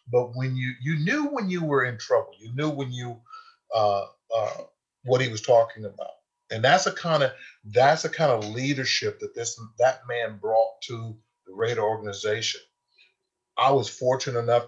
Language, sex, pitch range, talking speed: English, male, 110-130 Hz, 180 wpm